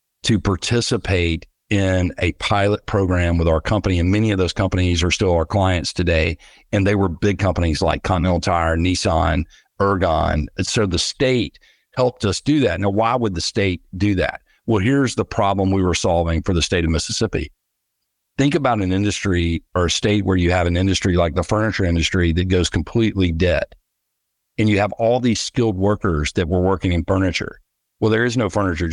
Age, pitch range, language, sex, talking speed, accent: 50-69, 90-110 Hz, English, male, 190 wpm, American